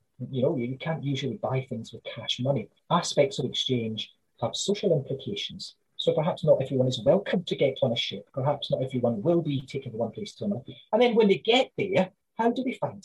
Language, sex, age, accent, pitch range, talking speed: English, male, 40-59, British, 130-185 Hz, 215 wpm